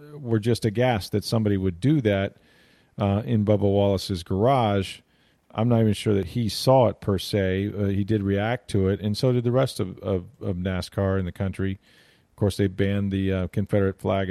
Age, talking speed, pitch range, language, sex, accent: 40-59, 200 wpm, 95-115 Hz, English, male, American